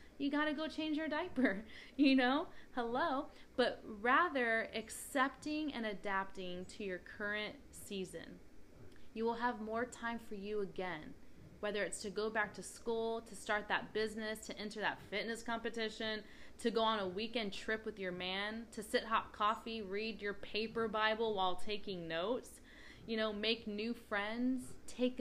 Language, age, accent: English, 20-39, American